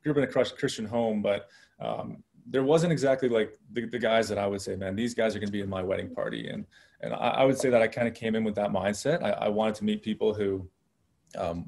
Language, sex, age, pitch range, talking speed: English, male, 20-39, 100-125 Hz, 260 wpm